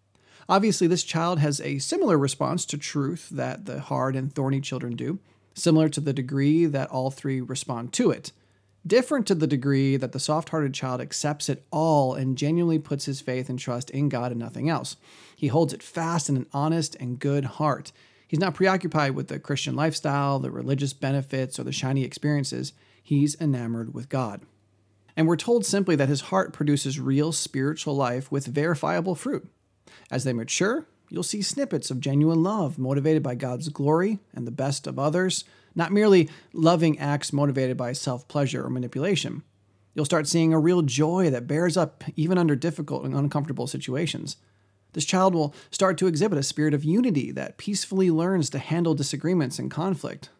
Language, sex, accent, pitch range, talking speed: English, male, American, 130-160 Hz, 180 wpm